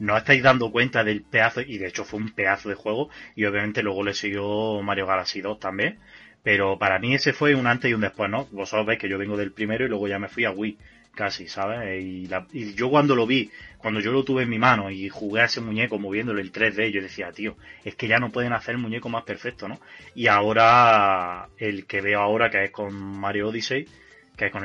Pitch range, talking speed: 100-125 Hz, 245 wpm